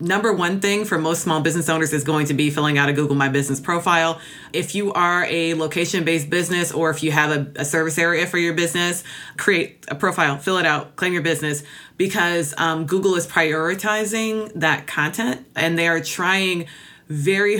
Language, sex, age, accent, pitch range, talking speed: English, female, 20-39, American, 155-185 Hz, 195 wpm